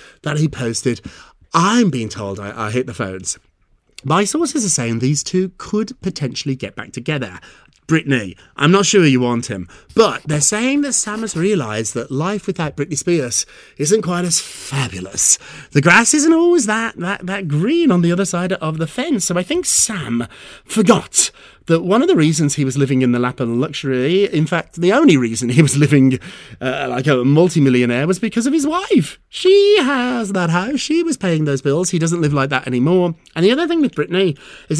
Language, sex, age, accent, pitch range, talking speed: English, male, 30-49, British, 130-210 Hz, 200 wpm